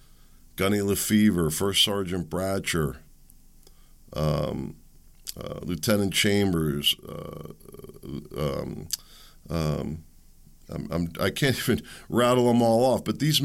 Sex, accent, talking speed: male, American, 105 wpm